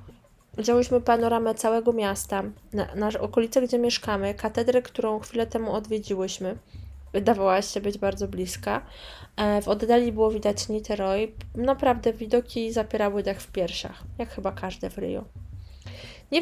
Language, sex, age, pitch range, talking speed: Polish, female, 20-39, 200-235 Hz, 135 wpm